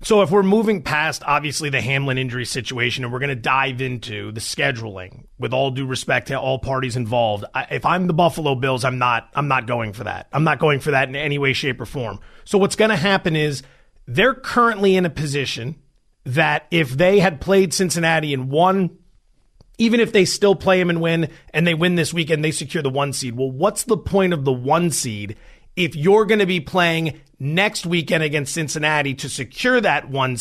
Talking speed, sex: 215 wpm, male